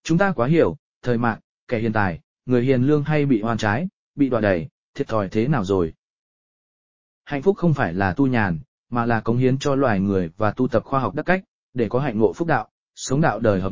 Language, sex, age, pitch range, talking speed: English, male, 20-39, 105-140 Hz, 240 wpm